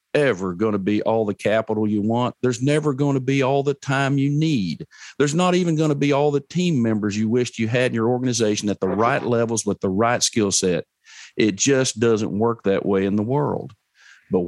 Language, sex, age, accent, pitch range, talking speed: English, male, 50-69, American, 105-145 Hz, 230 wpm